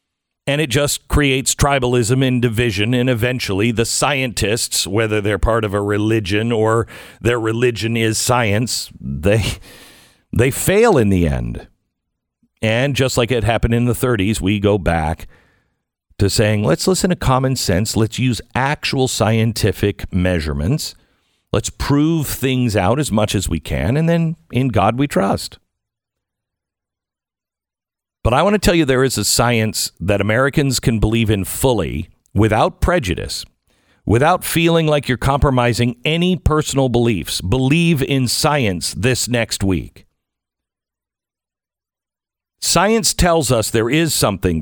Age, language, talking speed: 50-69, English, 140 wpm